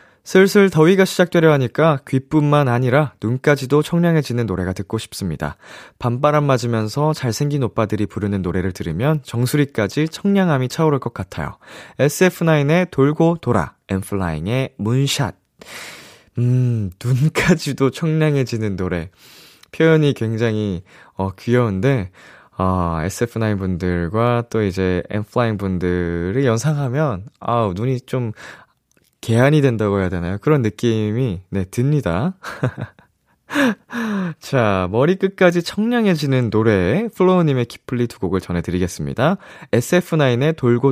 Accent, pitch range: native, 105-155 Hz